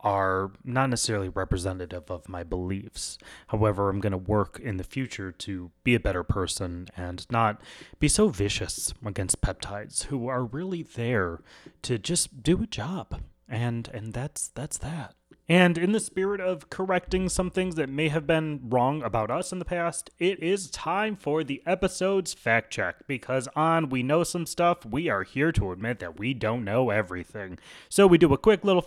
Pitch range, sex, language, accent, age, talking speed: 110-170 Hz, male, English, American, 30-49, 185 wpm